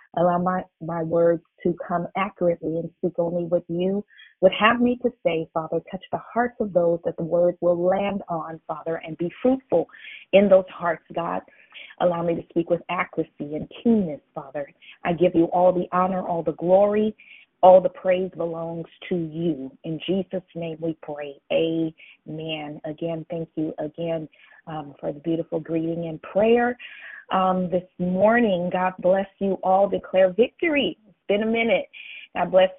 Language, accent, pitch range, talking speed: English, American, 170-205 Hz, 170 wpm